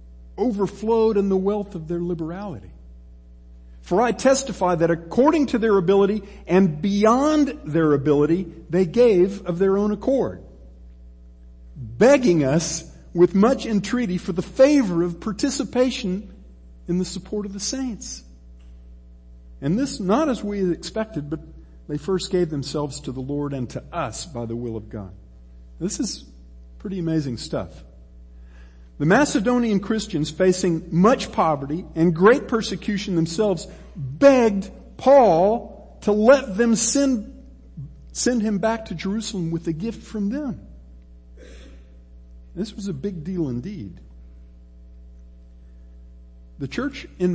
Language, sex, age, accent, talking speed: English, male, 50-69, American, 130 wpm